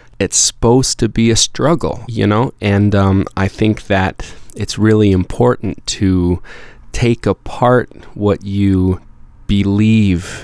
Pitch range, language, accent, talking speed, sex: 95-110 Hz, English, American, 125 wpm, male